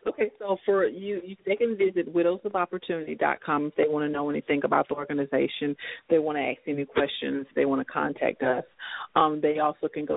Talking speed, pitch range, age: 205 wpm, 140-160 Hz, 40-59